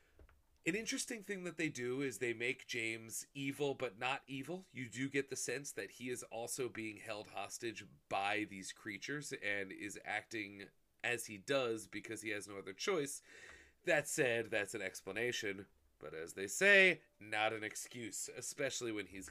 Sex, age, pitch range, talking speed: male, 30-49, 105-140 Hz, 175 wpm